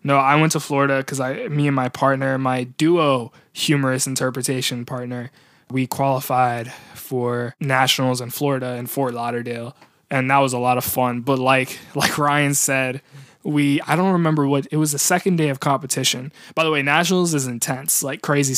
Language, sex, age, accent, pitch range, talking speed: English, male, 20-39, American, 125-145 Hz, 180 wpm